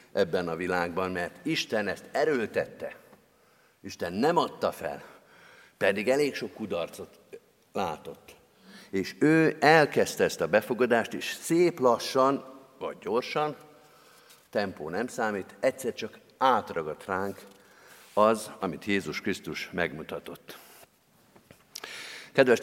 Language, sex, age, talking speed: Hungarian, male, 50-69, 105 wpm